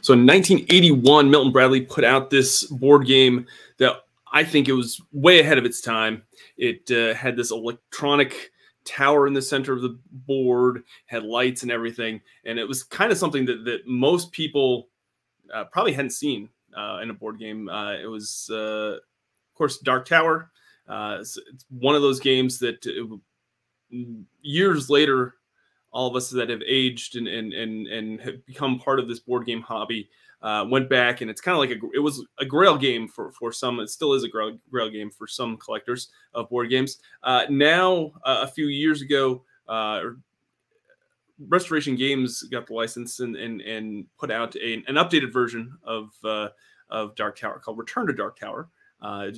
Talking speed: 185 wpm